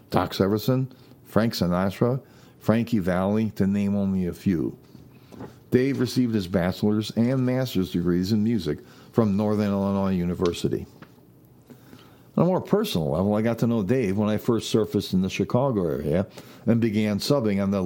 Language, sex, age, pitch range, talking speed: English, male, 50-69, 95-115 Hz, 160 wpm